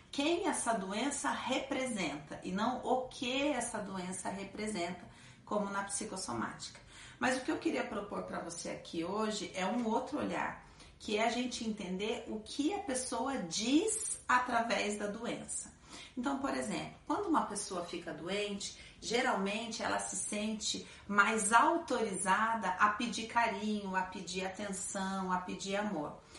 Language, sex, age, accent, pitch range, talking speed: Portuguese, female, 40-59, Brazilian, 200-255 Hz, 145 wpm